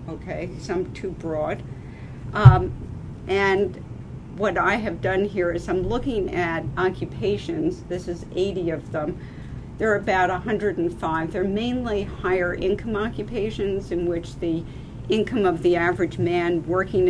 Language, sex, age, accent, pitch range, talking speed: English, female, 50-69, American, 150-190 Hz, 135 wpm